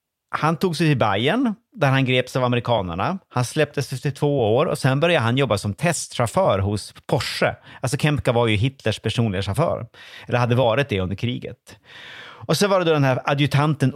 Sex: male